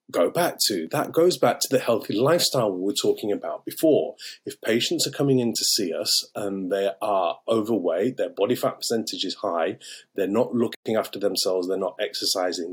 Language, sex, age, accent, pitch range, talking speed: English, male, 30-49, British, 100-135 Hz, 195 wpm